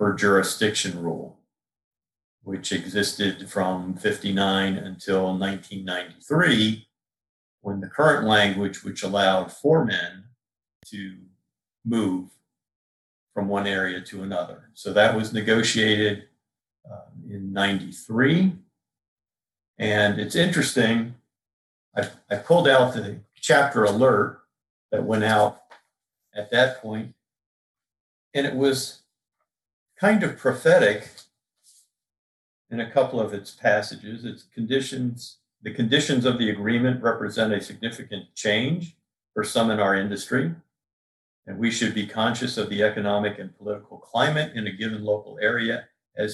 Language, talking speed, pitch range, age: English, 120 wpm, 95-120 Hz, 50-69